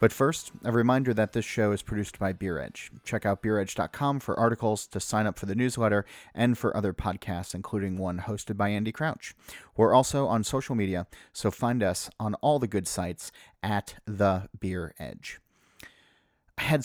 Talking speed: 185 wpm